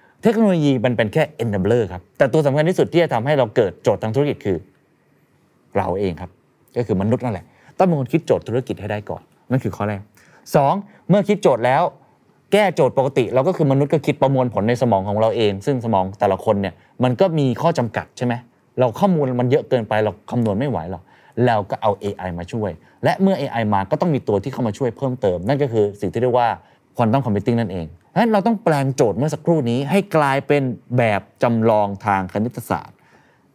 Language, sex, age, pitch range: Thai, male, 20-39, 105-145 Hz